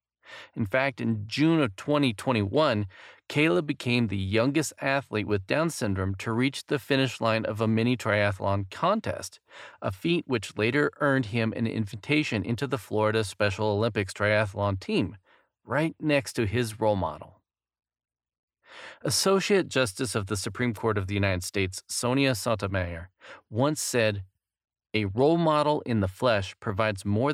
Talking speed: 145 wpm